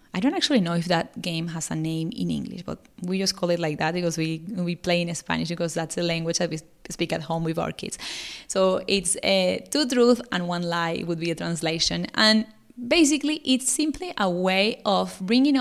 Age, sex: 20-39, female